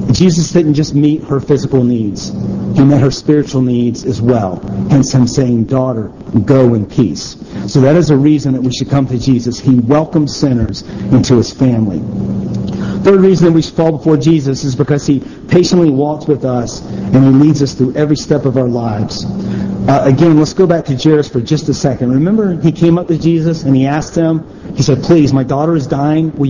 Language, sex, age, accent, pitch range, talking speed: English, male, 40-59, American, 130-160 Hz, 205 wpm